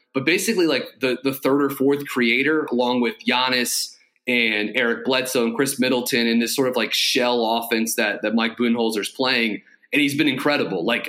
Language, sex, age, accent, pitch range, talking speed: English, male, 30-49, American, 115-140 Hz, 190 wpm